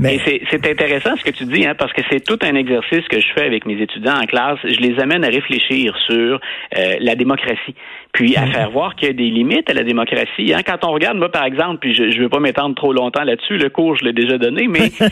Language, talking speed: French, 260 wpm